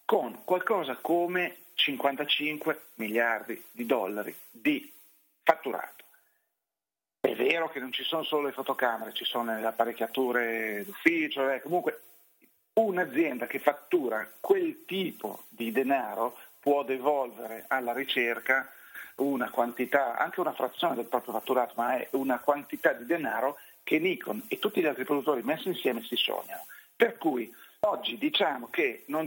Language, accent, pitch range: Italian, native, 125-180 Hz